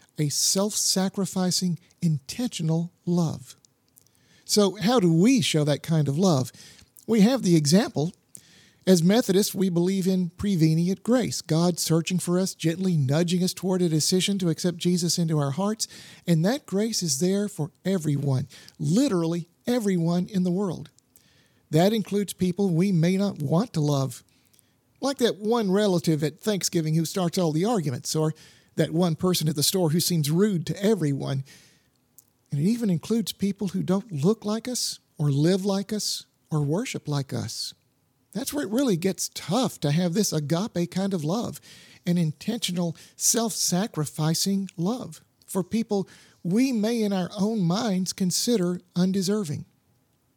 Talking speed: 155 wpm